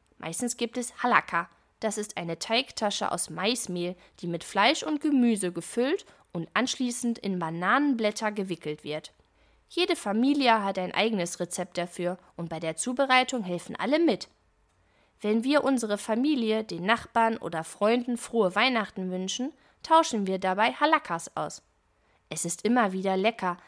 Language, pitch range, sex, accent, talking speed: German, 175-245 Hz, female, German, 145 wpm